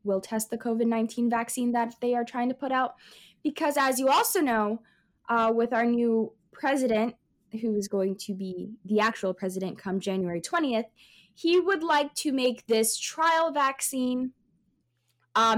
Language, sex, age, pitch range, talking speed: English, female, 10-29, 220-290 Hz, 160 wpm